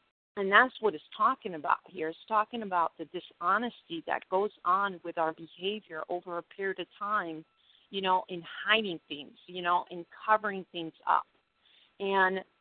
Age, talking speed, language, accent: 50-69, 165 wpm, English, American